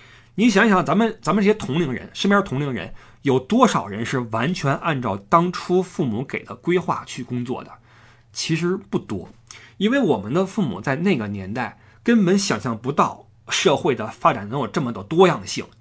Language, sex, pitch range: Chinese, male, 125-205 Hz